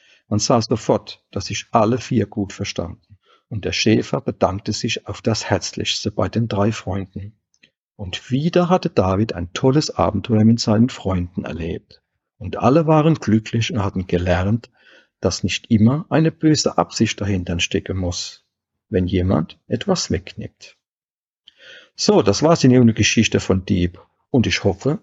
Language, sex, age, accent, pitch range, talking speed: German, male, 50-69, German, 95-125 Hz, 150 wpm